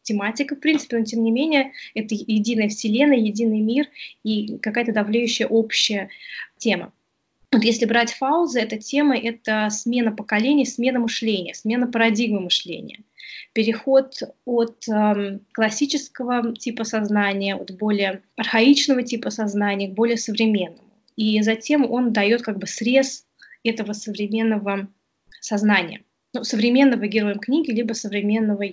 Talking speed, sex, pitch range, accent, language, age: 130 wpm, female, 205-240 Hz, native, Russian, 20-39